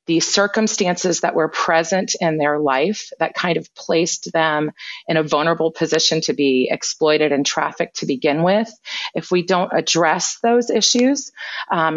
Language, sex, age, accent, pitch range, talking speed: English, female, 30-49, American, 155-190 Hz, 160 wpm